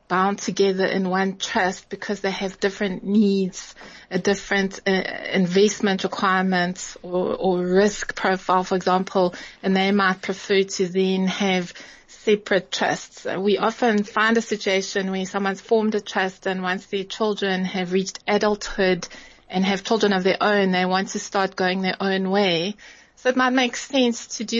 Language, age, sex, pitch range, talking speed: English, 20-39, female, 190-215 Hz, 165 wpm